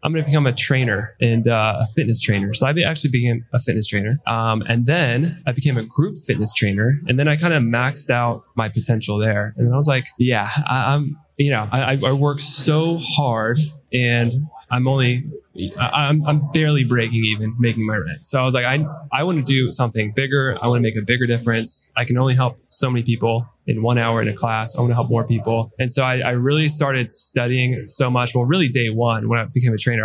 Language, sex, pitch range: English, male, 115-135 Hz